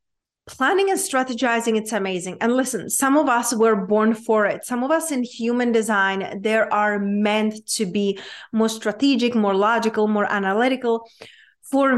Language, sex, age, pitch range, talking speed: English, female, 30-49, 205-245 Hz, 160 wpm